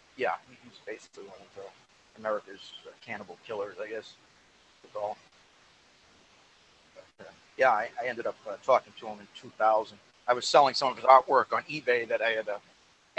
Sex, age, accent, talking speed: male, 40-59, American, 180 wpm